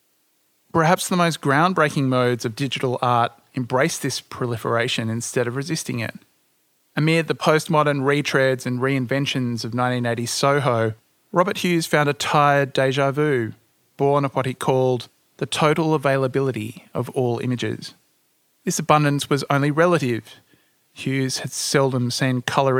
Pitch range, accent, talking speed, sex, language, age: 120-150 Hz, Australian, 135 wpm, male, English, 30-49